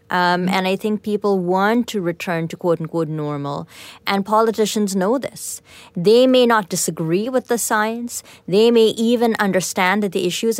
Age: 30-49